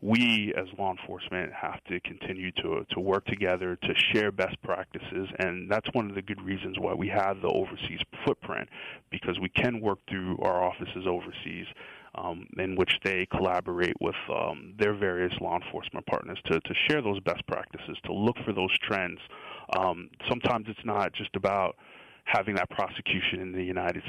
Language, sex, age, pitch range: English, male, 30-49, 90-105 Hz